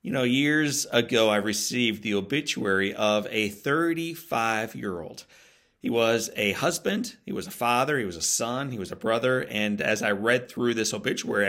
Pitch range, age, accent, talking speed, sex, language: 105-130 Hz, 40-59, American, 180 wpm, male, English